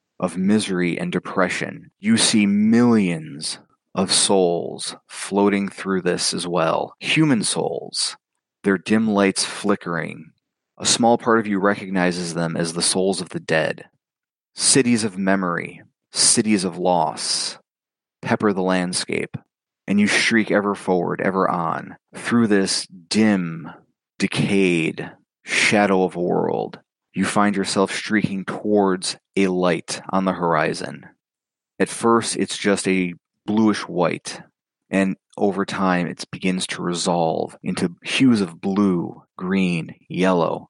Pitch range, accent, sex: 90-105 Hz, American, male